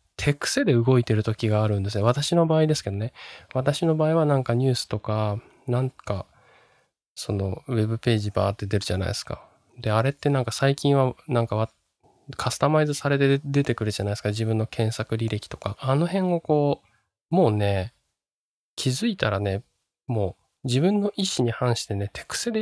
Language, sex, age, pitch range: Japanese, male, 20-39, 105-145 Hz